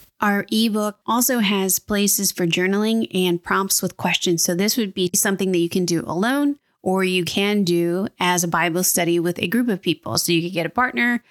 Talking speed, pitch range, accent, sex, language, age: 210 wpm, 175-205 Hz, American, female, English, 30-49